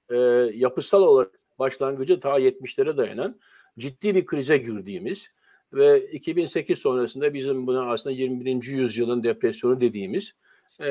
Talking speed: 110 wpm